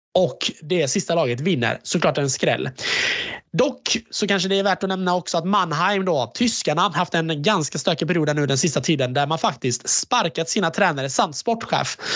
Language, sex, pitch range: Swedish, male, 140-205 Hz